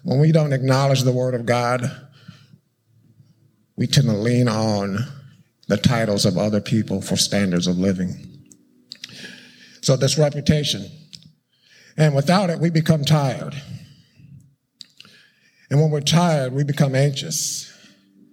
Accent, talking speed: American, 125 wpm